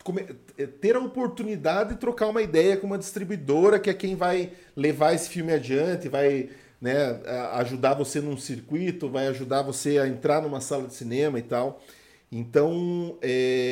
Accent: Brazilian